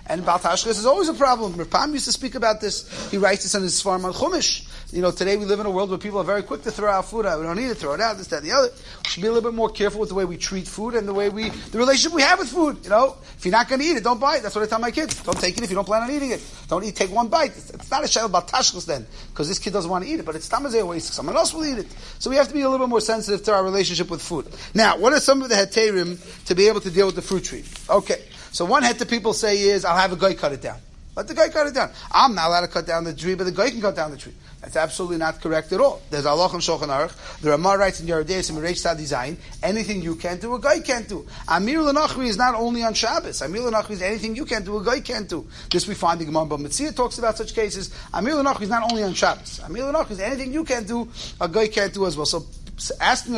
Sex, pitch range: male, 180-240 Hz